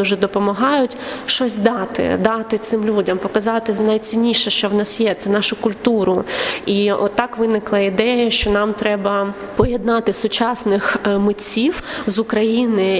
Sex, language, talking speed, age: female, Ukrainian, 135 wpm, 20-39